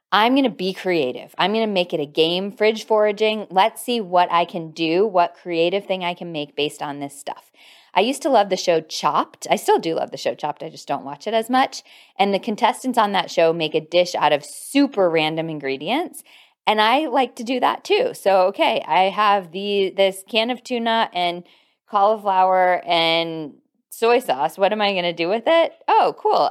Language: English